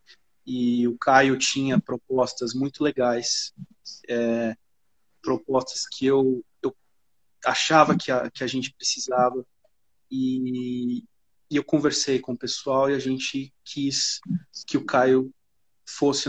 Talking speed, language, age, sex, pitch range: 120 wpm, Portuguese, 30-49, male, 130-175 Hz